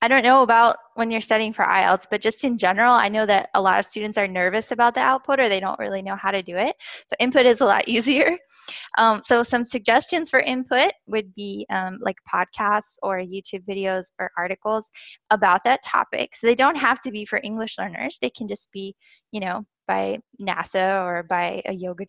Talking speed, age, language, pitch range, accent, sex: 215 wpm, 10-29, English, 195-245 Hz, American, female